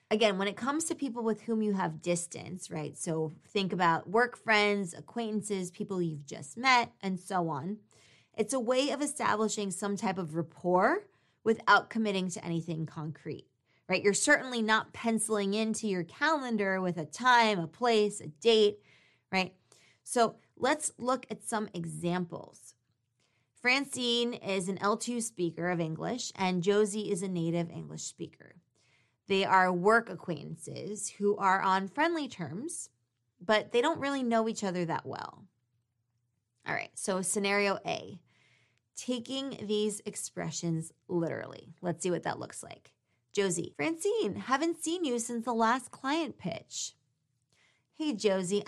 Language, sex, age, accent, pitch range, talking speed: English, female, 20-39, American, 170-230 Hz, 150 wpm